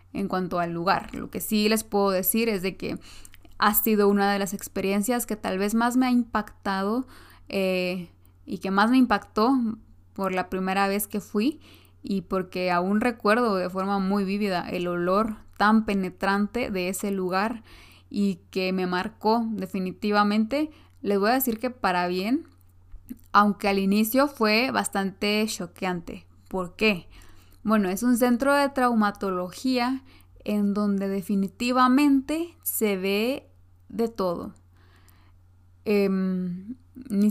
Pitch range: 185-220 Hz